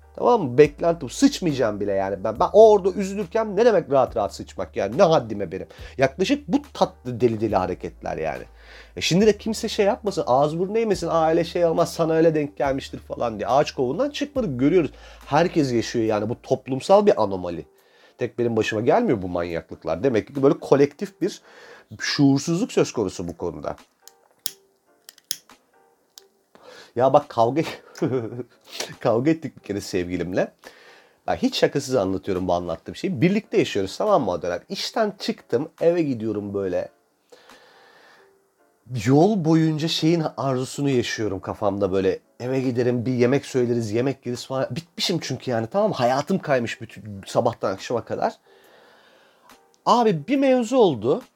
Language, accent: Turkish, native